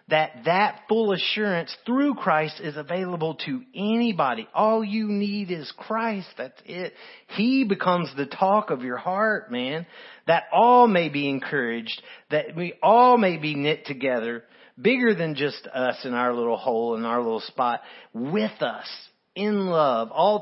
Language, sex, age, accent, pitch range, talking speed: English, male, 40-59, American, 140-210 Hz, 160 wpm